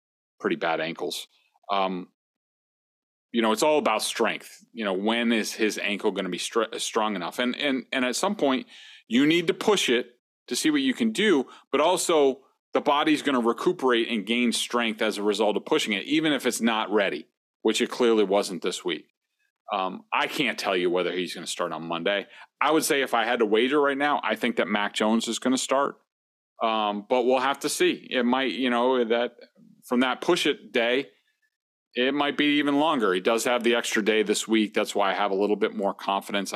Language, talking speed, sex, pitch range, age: English, 225 wpm, male, 100-130 Hz, 40-59